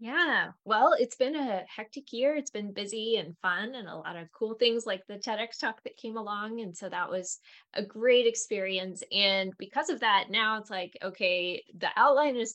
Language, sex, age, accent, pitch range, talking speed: English, female, 10-29, American, 185-225 Hz, 205 wpm